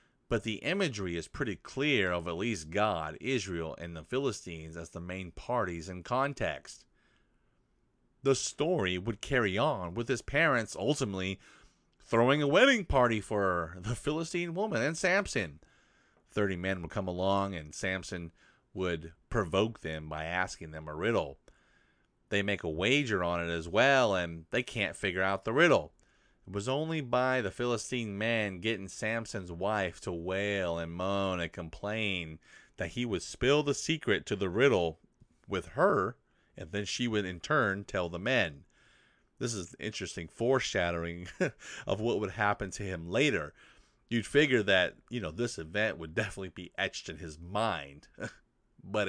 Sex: male